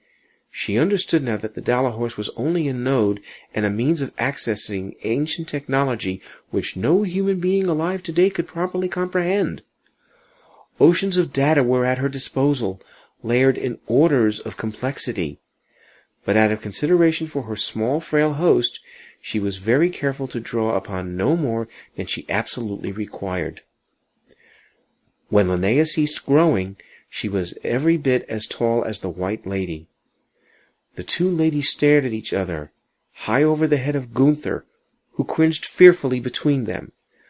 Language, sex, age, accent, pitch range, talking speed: English, male, 50-69, American, 105-160 Hz, 150 wpm